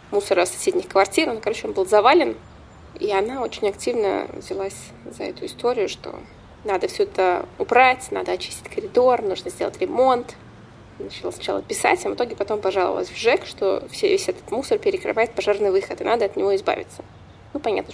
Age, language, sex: 20-39, Russian, female